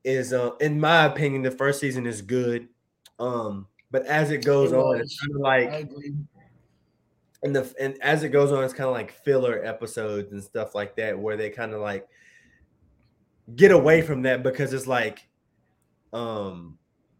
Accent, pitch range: American, 100-135 Hz